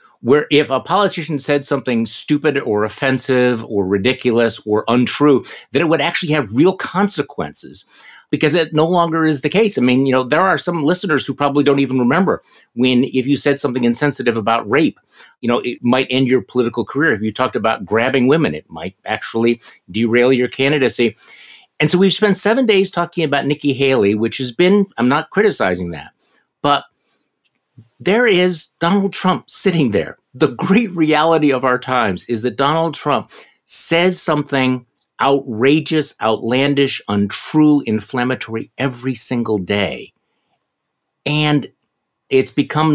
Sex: male